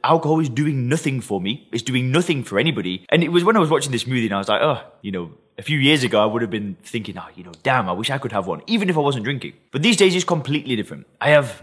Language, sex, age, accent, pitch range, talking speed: English, male, 20-39, British, 115-160 Hz, 305 wpm